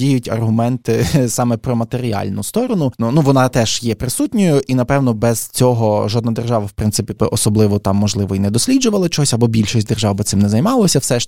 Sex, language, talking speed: male, Ukrainian, 190 wpm